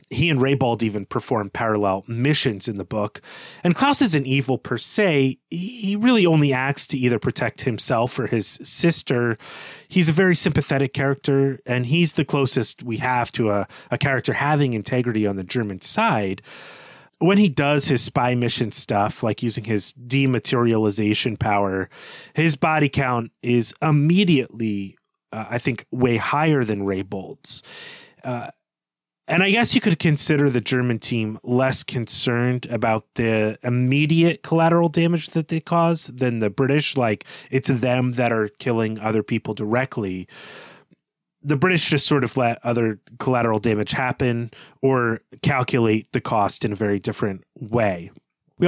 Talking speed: 155 wpm